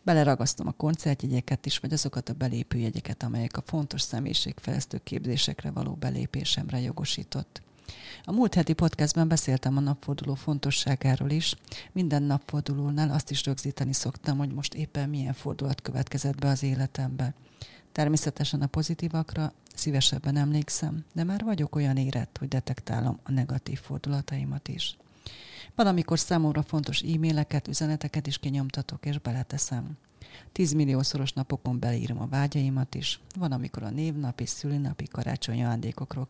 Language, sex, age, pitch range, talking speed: Hungarian, female, 40-59, 130-150 Hz, 130 wpm